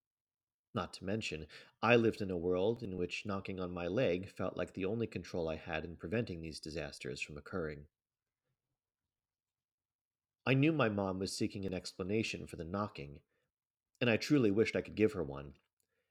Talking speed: 175 wpm